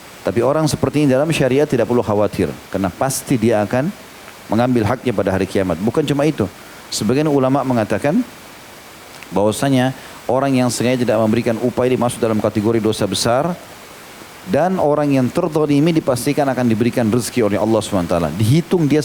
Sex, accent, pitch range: male, native, 105-135 Hz